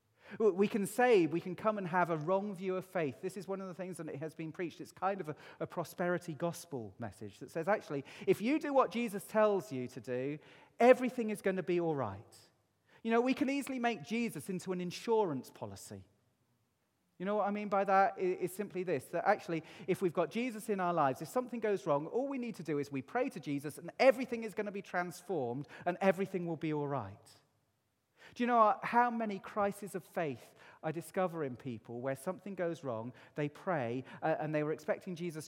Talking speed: 220 wpm